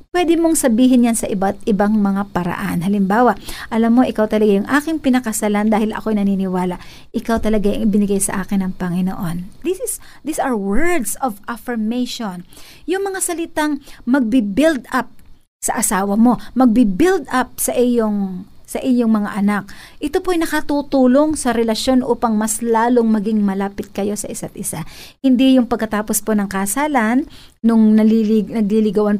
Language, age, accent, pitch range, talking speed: Filipino, 50-69, native, 220-285 Hz, 160 wpm